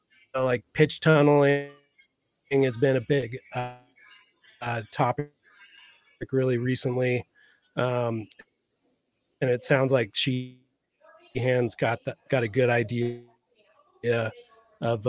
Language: English